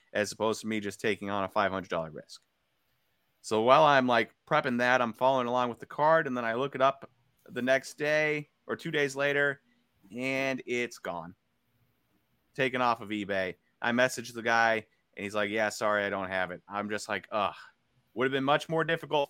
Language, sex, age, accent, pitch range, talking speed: English, male, 30-49, American, 115-150 Hz, 200 wpm